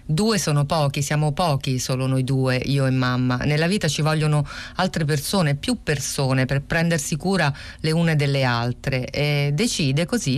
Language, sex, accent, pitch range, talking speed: Italian, female, native, 130-150 Hz, 170 wpm